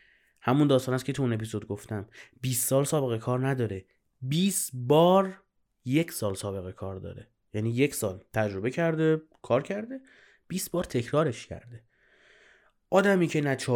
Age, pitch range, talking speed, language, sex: 30-49, 120-165 Hz, 145 wpm, Persian, male